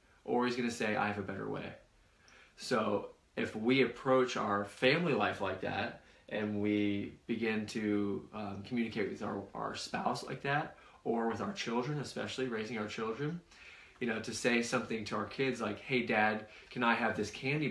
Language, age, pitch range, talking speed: English, 20-39, 100-120 Hz, 185 wpm